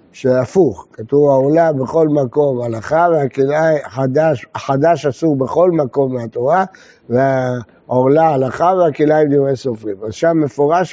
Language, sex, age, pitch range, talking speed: Hebrew, male, 60-79, 140-180 Hz, 130 wpm